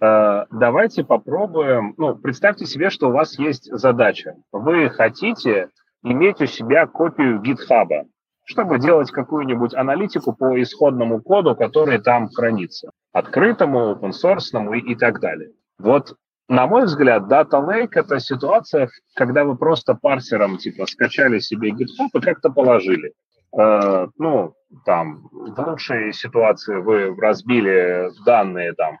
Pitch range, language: 100-155 Hz, Russian